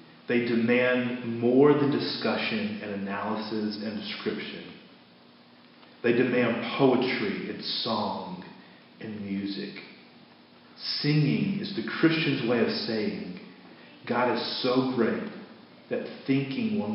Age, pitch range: 40-59, 105-135 Hz